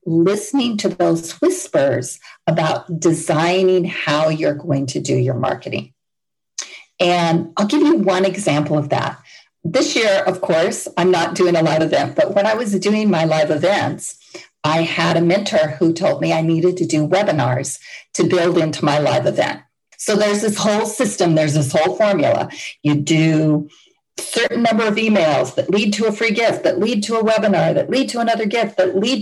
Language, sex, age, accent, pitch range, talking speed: English, female, 50-69, American, 160-205 Hz, 185 wpm